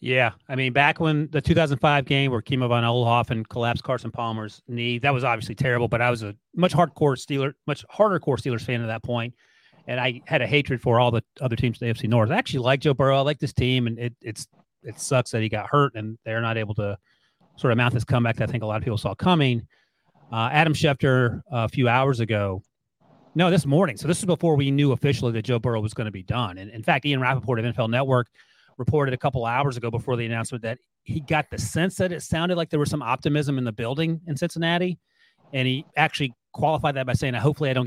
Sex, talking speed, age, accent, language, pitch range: male, 245 wpm, 30-49, American, English, 120-145 Hz